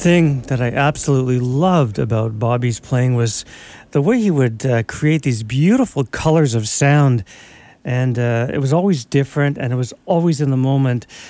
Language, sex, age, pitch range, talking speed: English, male, 50-69, 120-145 Hz, 175 wpm